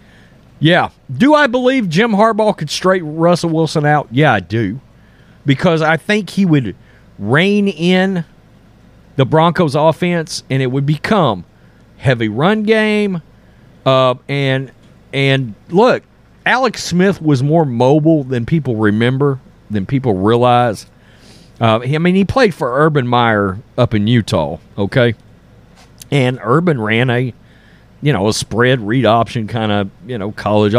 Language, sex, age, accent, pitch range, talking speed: English, male, 40-59, American, 120-170 Hz, 140 wpm